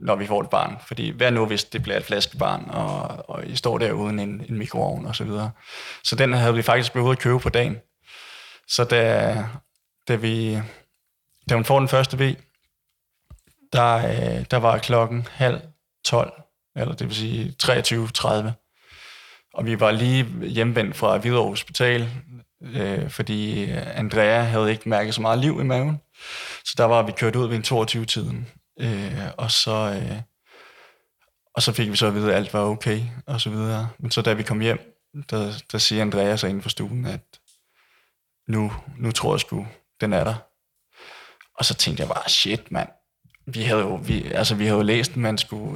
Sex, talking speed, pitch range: male, 185 wpm, 110-130 Hz